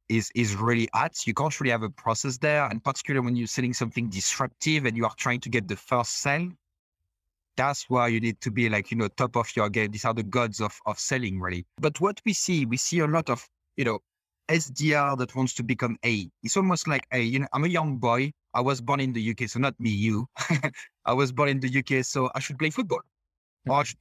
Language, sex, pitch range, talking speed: English, male, 110-140 Hz, 245 wpm